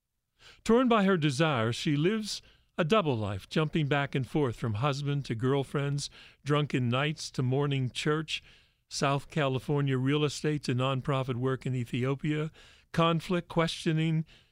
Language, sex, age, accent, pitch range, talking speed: English, male, 50-69, American, 115-150 Hz, 135 wpm